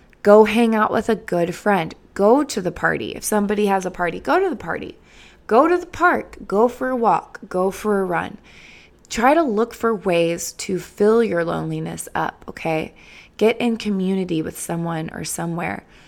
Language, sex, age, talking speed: English, female, 20-39, 185 wpm